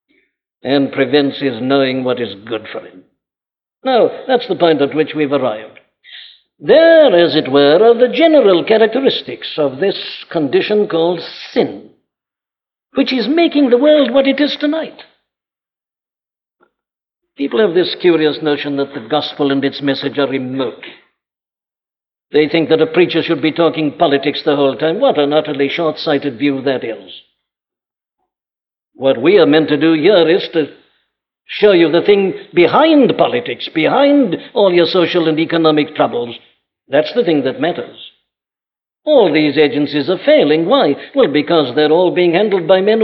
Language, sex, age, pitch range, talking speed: English, male, 60-79, 145-205 Hz, 155 wpm